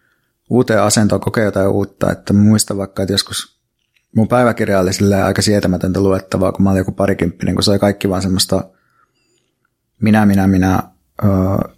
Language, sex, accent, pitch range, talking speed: Finnish, male, native, 95-105 Hz, 160 wpm